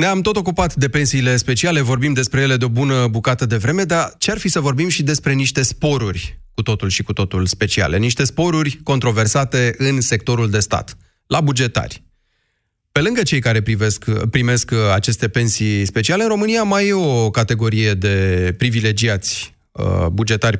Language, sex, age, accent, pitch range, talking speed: Romanian, male, 30-49, native, 105-140 Hz, 165 wpm